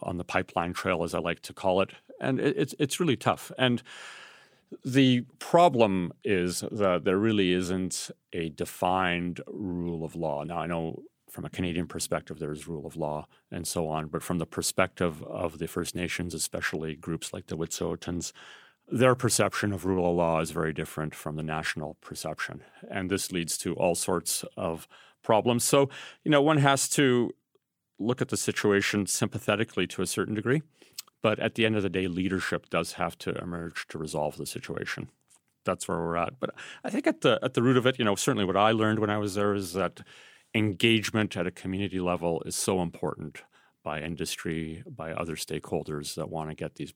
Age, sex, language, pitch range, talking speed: 40-59, male, English, 85-110 Hz, 195 wpm